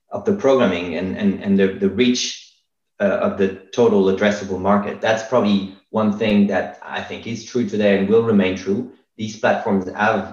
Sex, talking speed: male, 180 wpm